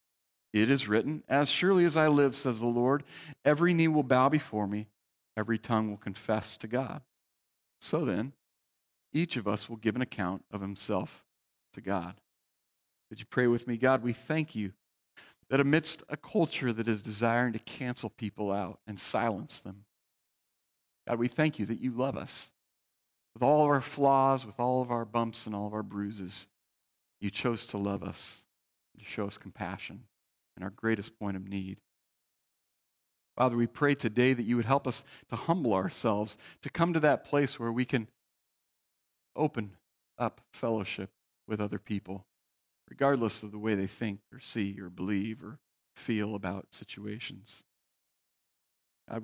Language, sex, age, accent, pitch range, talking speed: English, male, 50-69, American, 95-125 Hz, 170 wpm